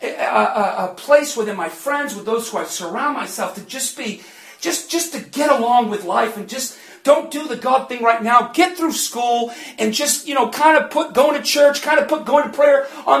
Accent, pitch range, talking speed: American, 230-310 Hz, 235 wpm